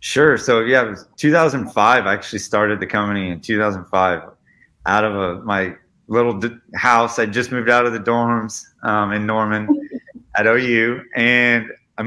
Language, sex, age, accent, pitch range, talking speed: English, male, 30-49, American, 110-135 Hz, 165 wpm